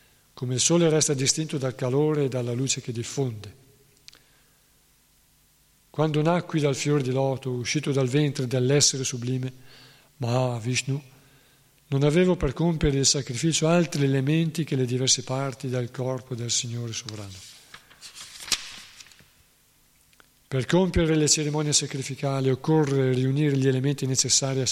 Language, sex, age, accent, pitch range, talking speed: Italian, male, 50-69, native, 130-150 Hz, 130 wpm